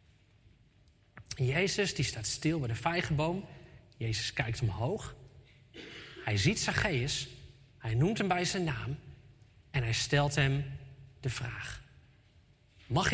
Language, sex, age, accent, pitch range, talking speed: Dutch, male, 30-49, Dutch, 120-165 Hz, 120 wpm